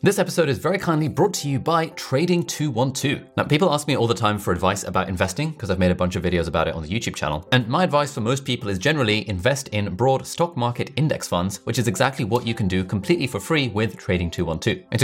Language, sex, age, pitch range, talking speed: English, male, 20-39, 90-125 Hz, 250 wpm